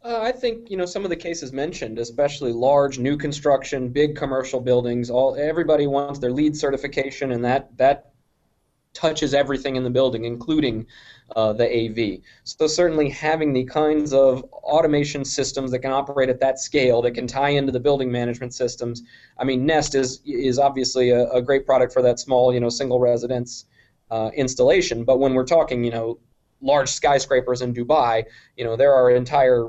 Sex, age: male, 20-39